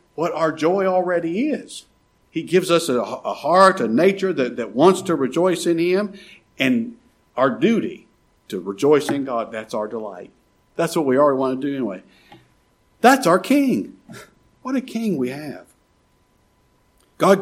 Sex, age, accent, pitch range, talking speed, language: male, 50-69, American, 140-210 Hz, 160 wpm, English